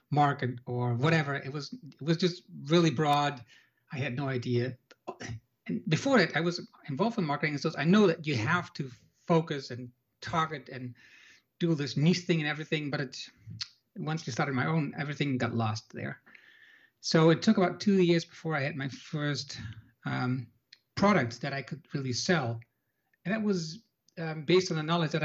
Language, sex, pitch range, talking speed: Dutch, male, 130-170 Hz, 180 wpm